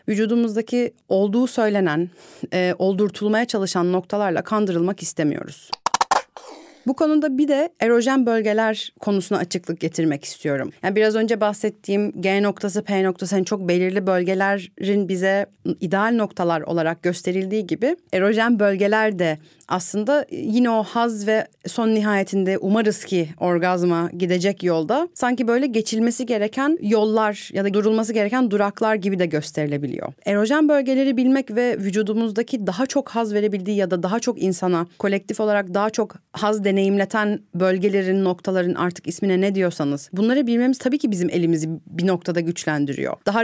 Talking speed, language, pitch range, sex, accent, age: 140 wpm, Turkish, 185-225 Hz, female, native, 30-49